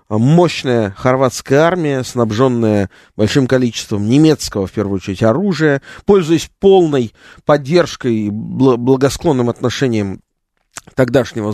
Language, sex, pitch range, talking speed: Russian, male, 105-145 Hz, 95 wpm